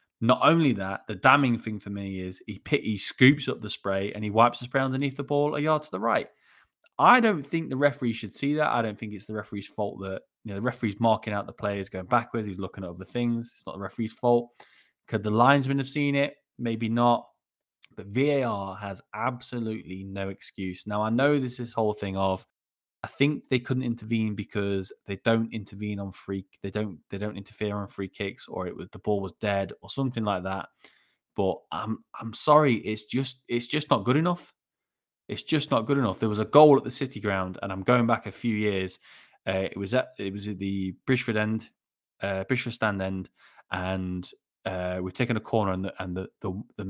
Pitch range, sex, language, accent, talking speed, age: 100-125 Hz, male, English, British, 220 wpm, 20-39